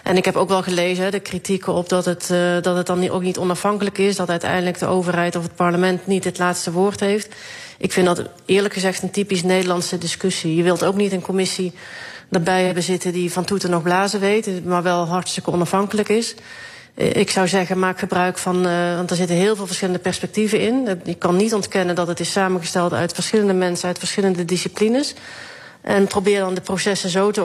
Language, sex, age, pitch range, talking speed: Dutch, female, 30-49, 175-195 Hz, 205 wpm